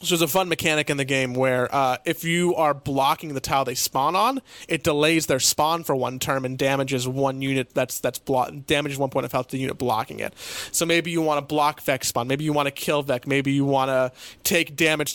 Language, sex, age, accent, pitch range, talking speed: English, male, 30-49, American, 135-170 Hz, 250 wpm